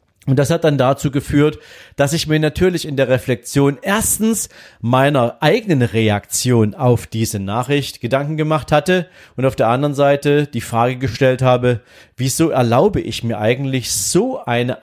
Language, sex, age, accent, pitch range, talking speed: German, male, 40-59, German, 120-160 Hz, 160 wpm